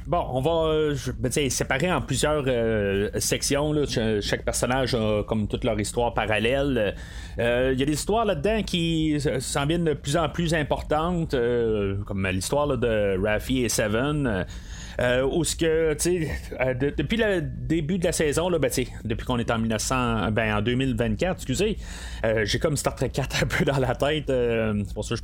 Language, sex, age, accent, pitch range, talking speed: French, male, 30-49, Canadian, 115-155 Hz, 205 wpm